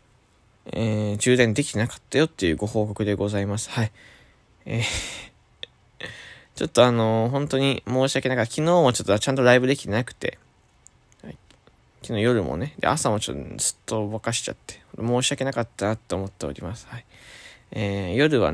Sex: male